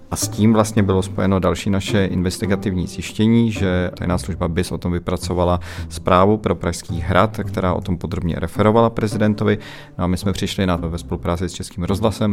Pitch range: 85-95 Hz